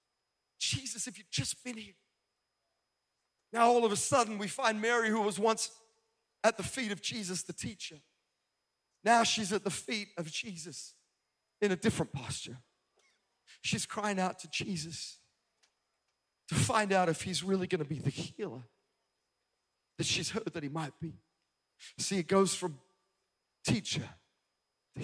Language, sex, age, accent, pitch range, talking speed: English, male, 40-59, American, 180-235 Hz, 155 wpm